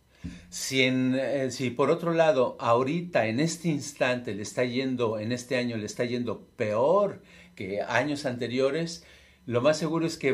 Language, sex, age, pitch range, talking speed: Spanish, male, 50-69, 120-160 Hz, 170 wpm